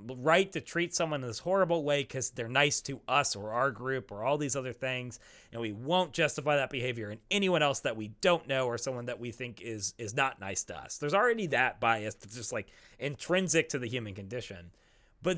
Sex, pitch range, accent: male, 110-155 Hz, American